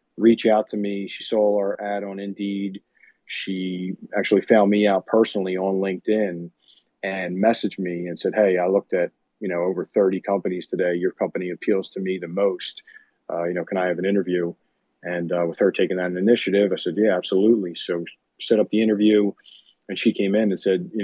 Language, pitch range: English, 90-105 Hz